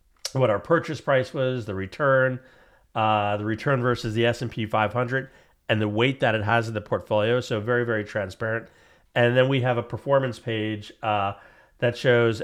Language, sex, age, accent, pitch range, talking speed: English, male, 40-59, American, 110-130 Hz, 180 wpm